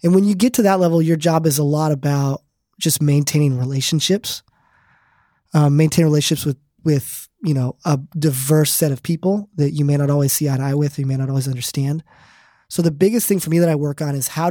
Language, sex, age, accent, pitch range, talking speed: English, male, 20-39, American, 135-165 Hz, 230 wpm